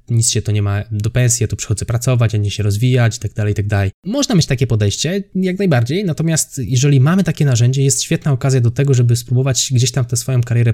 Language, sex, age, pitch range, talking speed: Polish, male, 20-39, 110-135 Hz, 235 wpm